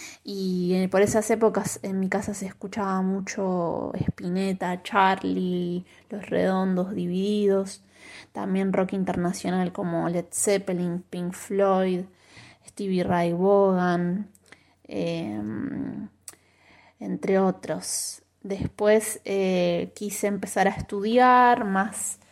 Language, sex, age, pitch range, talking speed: Spanish, female, 20-39, 180-215 Hz, 95 wpm